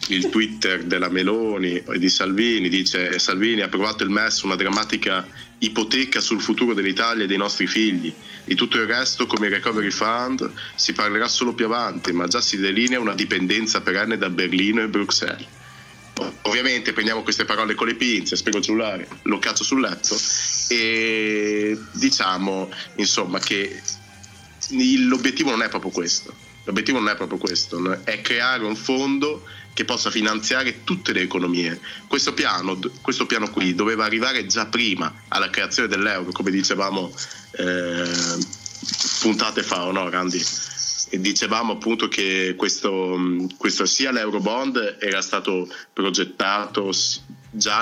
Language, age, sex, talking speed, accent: Italian, 30-49, male, 145 wpm, native